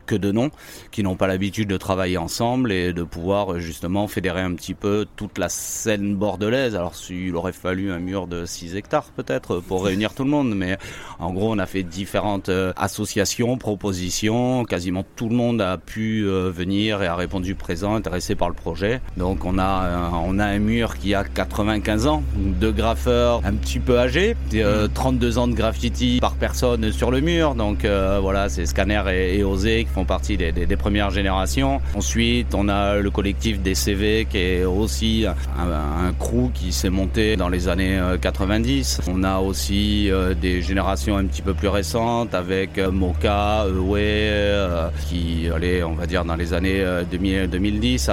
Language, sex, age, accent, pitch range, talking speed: French, male, 30-49, French, 85-105 Hz, 185 wpm